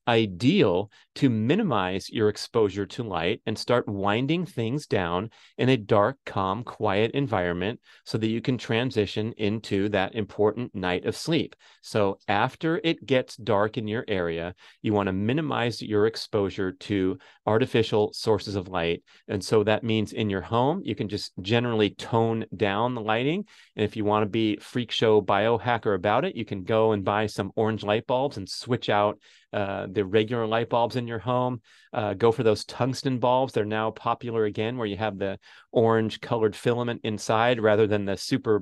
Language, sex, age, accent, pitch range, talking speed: English, male, 30-49, American, 105-115 Hz, 180 wpm